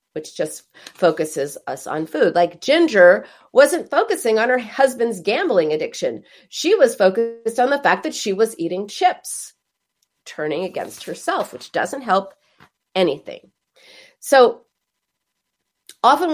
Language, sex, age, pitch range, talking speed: English, female, 40-59, 215-290 Hz, 130 wpm